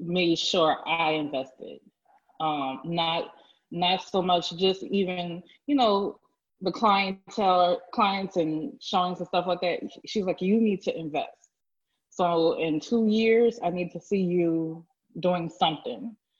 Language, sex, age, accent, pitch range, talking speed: English, female, 20-39, American, 170-205 Hz, 145 wpm